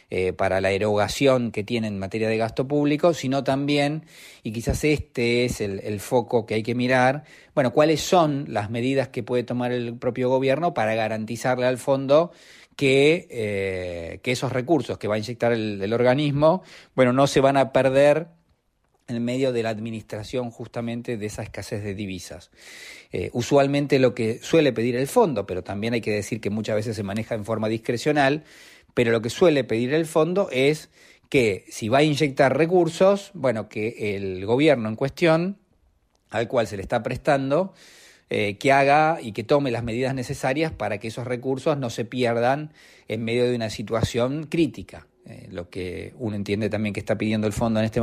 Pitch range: 110-140 Hz